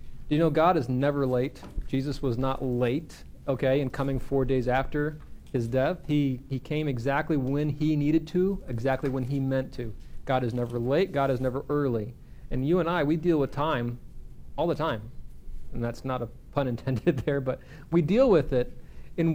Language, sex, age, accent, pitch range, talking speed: English, male, 40-59, American, 130-160 Hz, 195 wpm